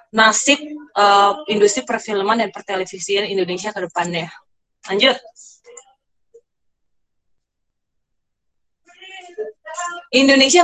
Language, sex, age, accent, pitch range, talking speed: Indonesian, female, 20-39, native, 220-320 Hz, 60 wpm